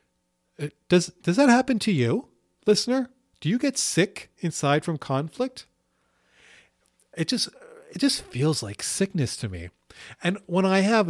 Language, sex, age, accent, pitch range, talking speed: English, male, 40-59, American, 120-185 Hz, 145 wpm